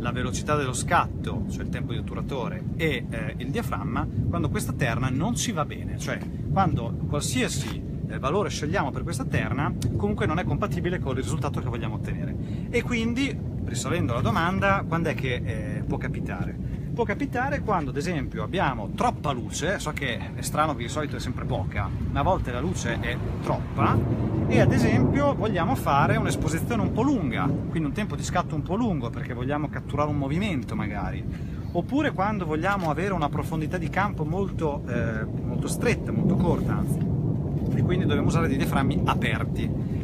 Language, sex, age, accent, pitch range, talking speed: Italian, male, 30-49, native, 120-145 Hz, 175 wpm